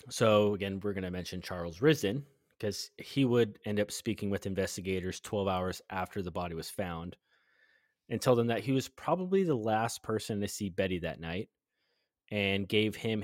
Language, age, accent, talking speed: English, 20-39, American, 185 wpm